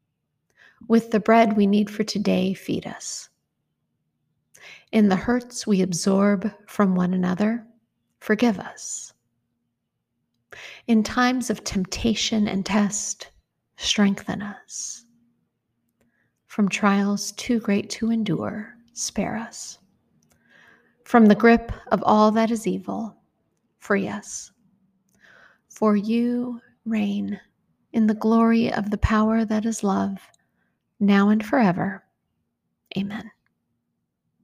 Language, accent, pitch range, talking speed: English, American, 195-225 Hz, 105 wpm